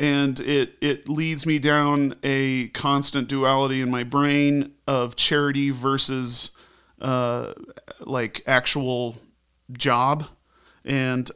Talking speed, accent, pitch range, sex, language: 105 wpm, American, 125-150 Hz, male, English